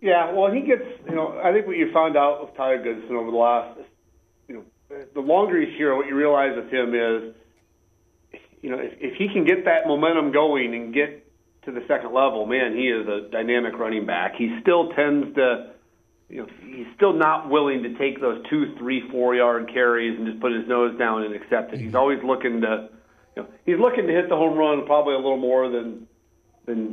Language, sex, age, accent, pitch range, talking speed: English, male, 40-59, American, 115-150 Hz, 220 wpm